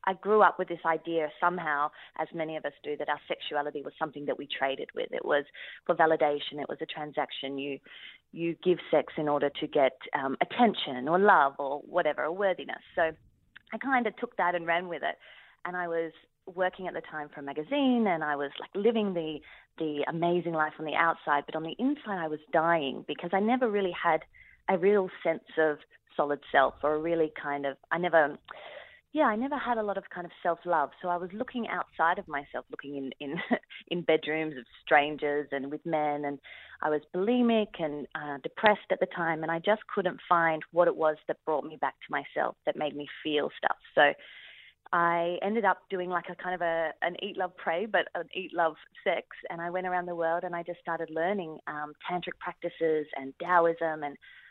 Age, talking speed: 30-49, 215 wpm